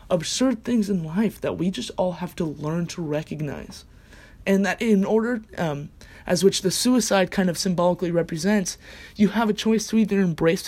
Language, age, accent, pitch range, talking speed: English, 20-39, American, 170-215 Hz, 185 wpm